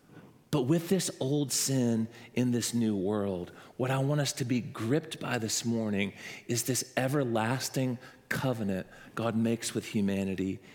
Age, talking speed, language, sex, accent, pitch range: 40-59, 150 wpm, English, male, American, 115-180 Hz